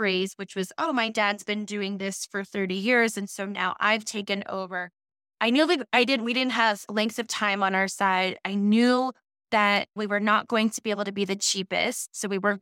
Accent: American